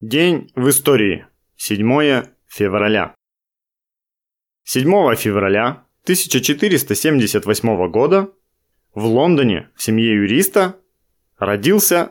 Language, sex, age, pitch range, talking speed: Russian, male, 20-39, 110-160 Hz, 75 wpm